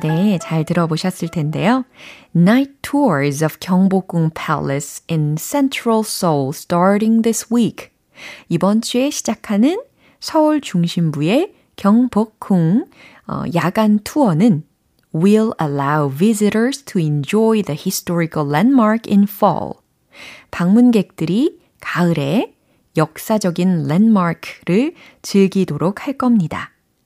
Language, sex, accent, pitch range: Korean, female, native, 165-245 Hz